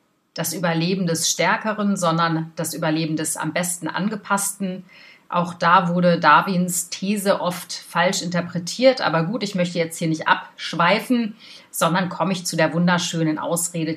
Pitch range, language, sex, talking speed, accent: 165-210 Hz, German, female, 145 wpm, German